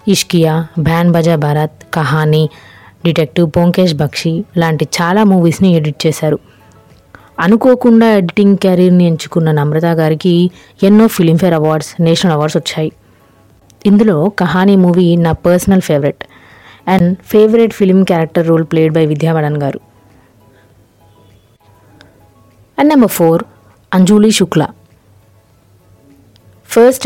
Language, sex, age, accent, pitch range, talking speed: Telugu, female, 20-39, native, 145-185 Hz, 100 wpm